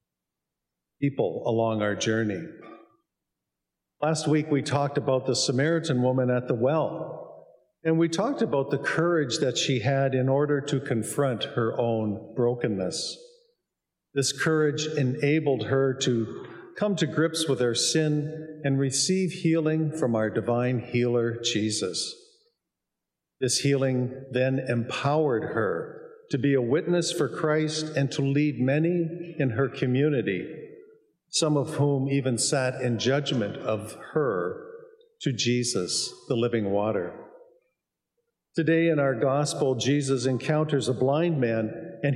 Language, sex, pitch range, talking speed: English, male, 125-155 Hz, 130 wpm